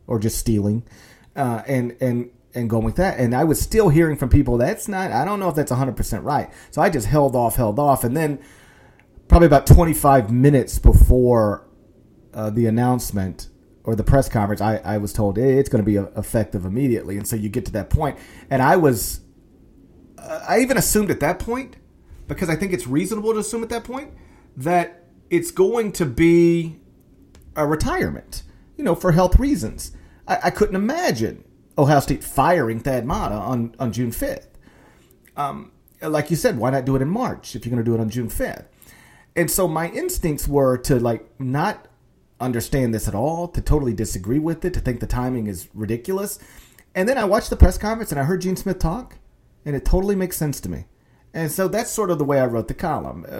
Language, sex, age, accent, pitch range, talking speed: English, male, 40-59, American, 115-170 Hz, 205 wpm